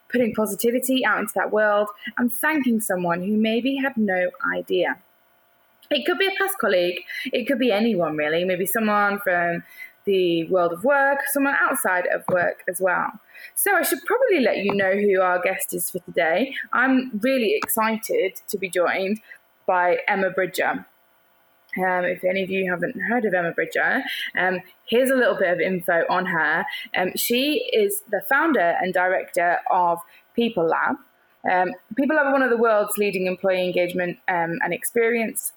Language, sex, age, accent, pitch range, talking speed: English, female, 20-39, British, 180-250 Hz, 170 wpm